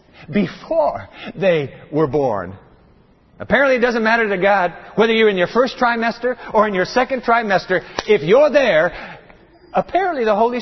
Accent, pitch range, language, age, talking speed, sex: American, 155-235 Hz, English, 60-79, 155 wpm, male